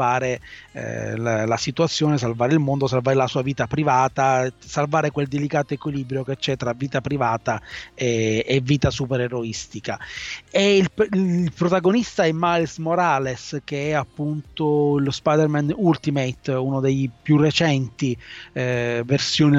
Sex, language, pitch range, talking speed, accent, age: male, Italian, 135-160 Hz, 130 wpm, native, 30-49